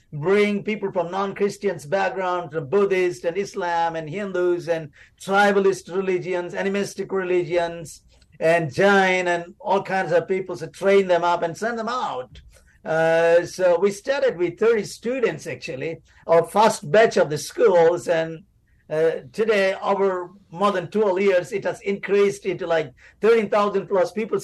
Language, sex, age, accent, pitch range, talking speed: English, male, 50-69, Indian, 175-215 Hz, 150 wpm